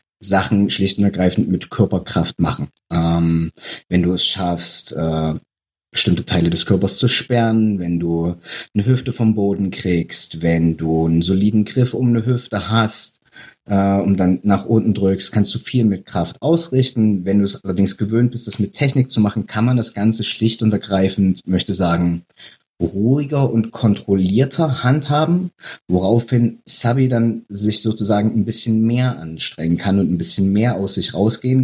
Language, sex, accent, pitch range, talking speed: German, male, German, 90-115 Hz, 165 wpm